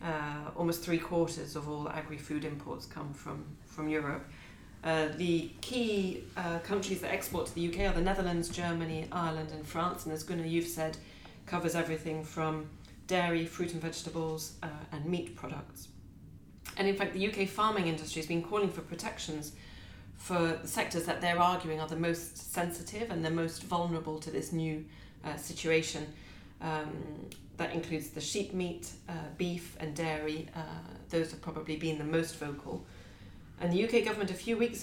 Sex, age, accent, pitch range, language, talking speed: female, 30-49, British, 155-175 Hz, English, 175 wpm